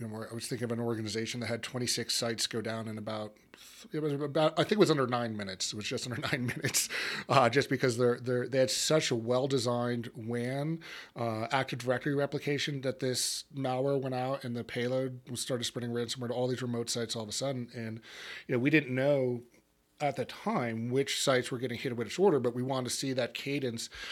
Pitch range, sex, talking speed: 120-145 Hz, male, 225 wpm